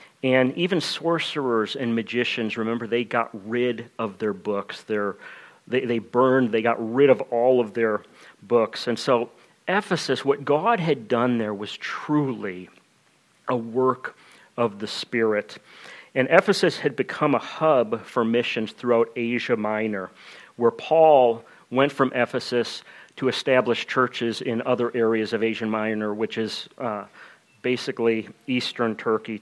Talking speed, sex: 140 wpm, male